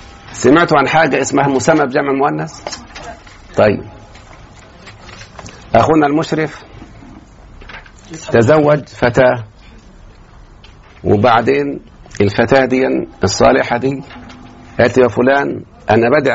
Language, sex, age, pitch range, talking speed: Arabic, male, 50-69, 115-150 Hz, 80 wpm